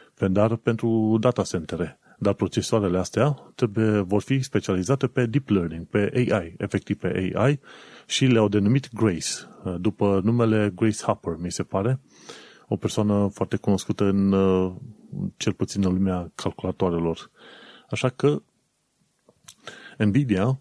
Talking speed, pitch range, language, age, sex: 125 wpm, 95-115 Hz, Romanian, 30-49, male